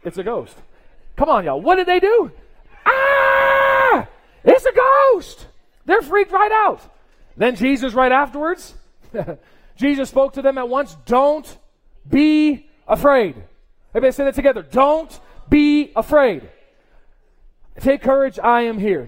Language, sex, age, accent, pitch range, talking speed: English, male, 40-59, American, 225-305 Hz, 135 wpm